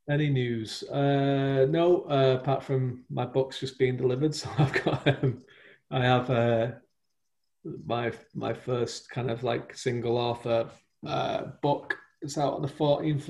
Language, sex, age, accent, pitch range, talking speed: English, male, 40-59, British, 115-140 Hz, 145 wpm